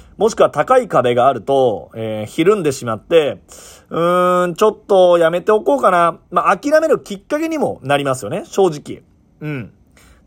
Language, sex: Japanese, male